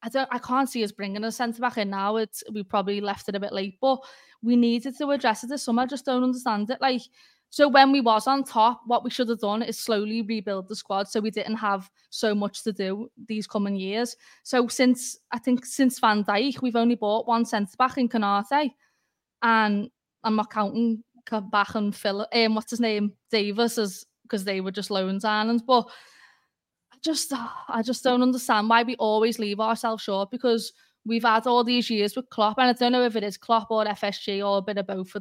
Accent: British